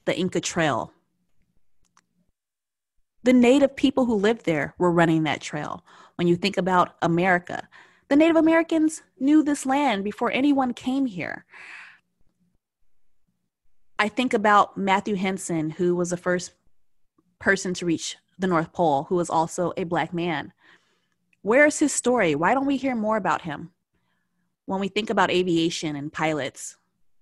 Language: English